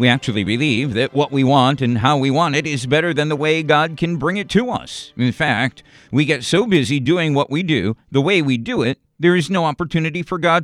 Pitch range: 120-160 Hz